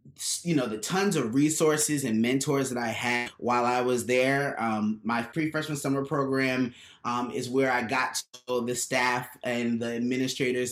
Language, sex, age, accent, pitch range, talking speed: English, male, 20-39, American, 120-150 Hz, 180 wpm